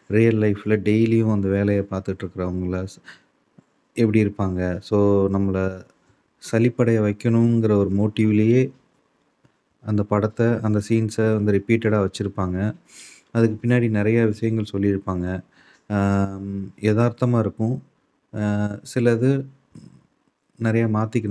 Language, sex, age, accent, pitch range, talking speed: Tamil, male, 30-49, native, 95-115 Hz, 85 wpm